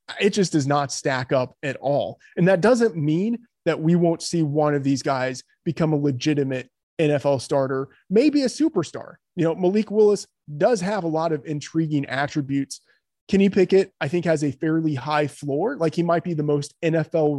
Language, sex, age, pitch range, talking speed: English, male, 20-39, 140-170 Hz, 190 wpm